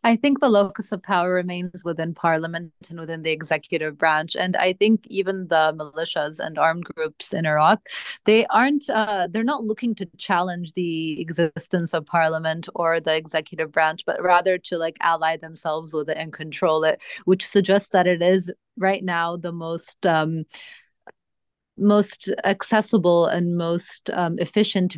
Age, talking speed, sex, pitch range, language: 30-49, 160 wpm, female, 165-195 Hz, English